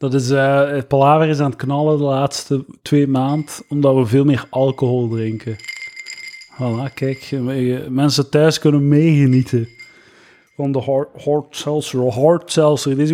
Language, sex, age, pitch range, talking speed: Dutch, male, 30-49, 135-165 Hz, 150 wpm